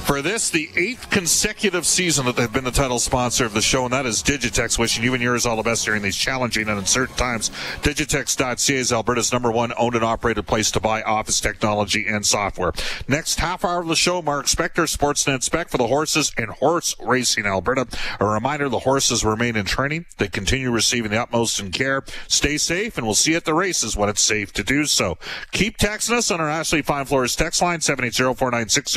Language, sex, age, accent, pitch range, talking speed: English, male, 40-59, American, 105-140 Hz, 215 wpm